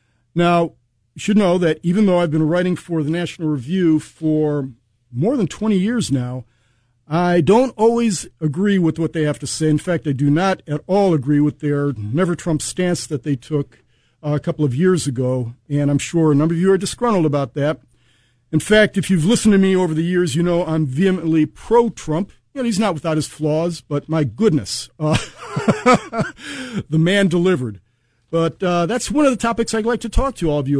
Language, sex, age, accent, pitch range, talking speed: English, male, 50-69, American, 140-185 Hz, 205 wpm